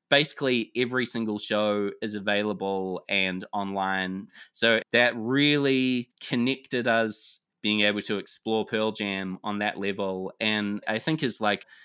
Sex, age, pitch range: male, 20-39, 105-130 Hz